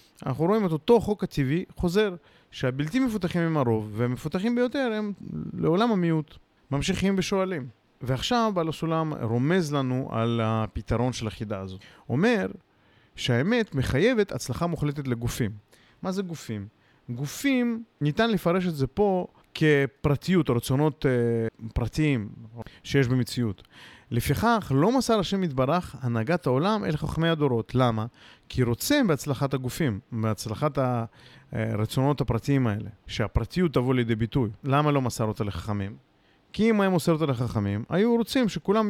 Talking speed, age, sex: 135 wpm, 30-49, male